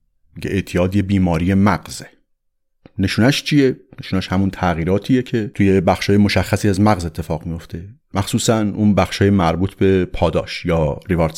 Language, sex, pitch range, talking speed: Persian, male, 90-105 Hz, 130 wpm